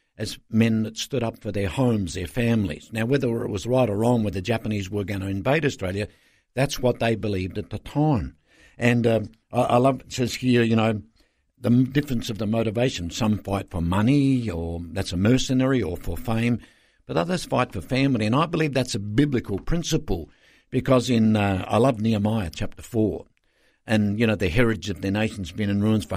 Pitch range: 95-120 Hz